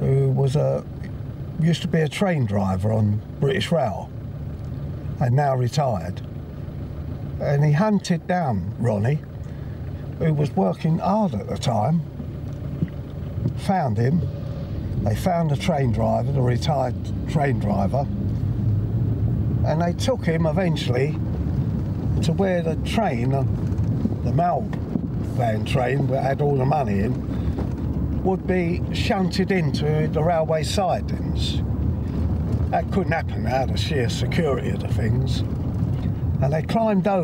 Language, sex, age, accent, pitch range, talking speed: English, male, 50-69, British, 105-155 Hz, 120 wpm